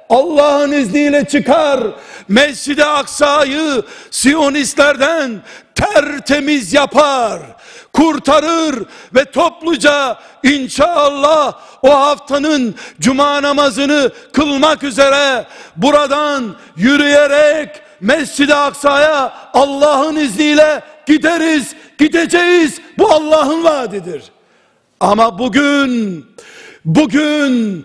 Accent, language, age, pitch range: native, Turkish, 60-79, 270-295 Hz